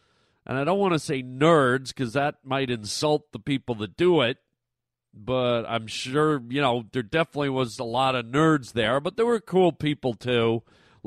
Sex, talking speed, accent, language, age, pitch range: male, 195 wpm, American, English, 40-59, 115-150 Hz